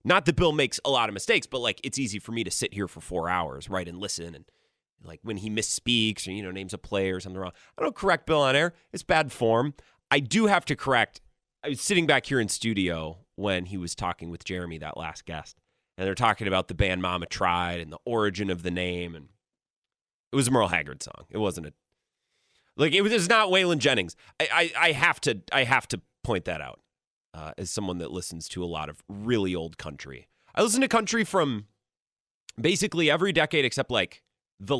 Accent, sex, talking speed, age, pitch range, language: American, male, 230 wpm, 30-49, 90-145 Hz, English